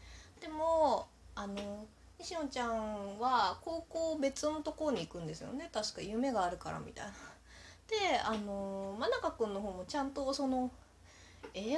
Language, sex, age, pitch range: Japanese, female, 20-39, 215-300 Hz